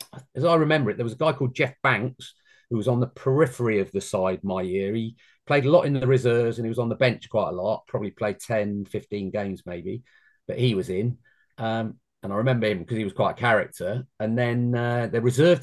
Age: 40-59